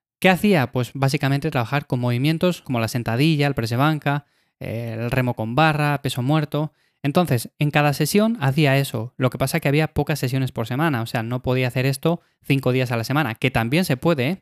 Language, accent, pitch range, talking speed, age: Spanish, Spanish, 130-165 Hz, 205 wpm, 20-39